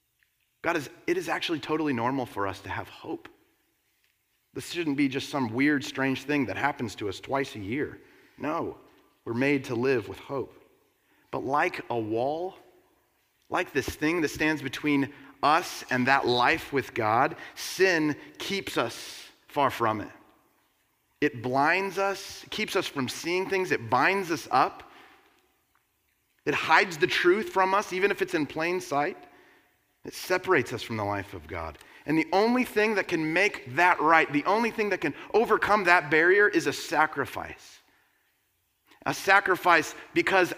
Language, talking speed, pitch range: English, 165 wpm, 130-200 Hz